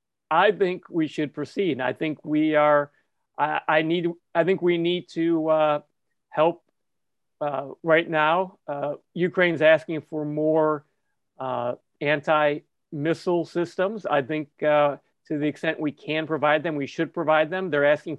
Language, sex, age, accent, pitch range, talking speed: English, male, 40-59, American, 145-170 Hz, 150 wpm